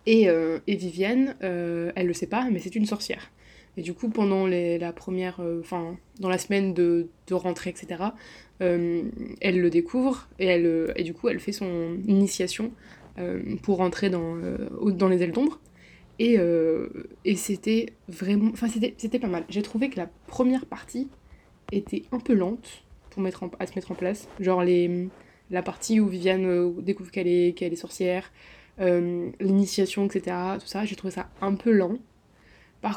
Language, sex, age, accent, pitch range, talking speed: French, female, 20-39, French, 180-210 Hz, 190 wpm